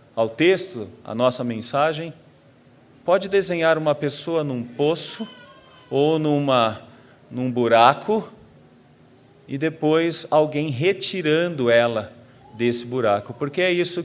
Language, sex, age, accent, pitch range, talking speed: Portuguese, male, 40-59, Brazilian, 130-175 Hz, 105 wpm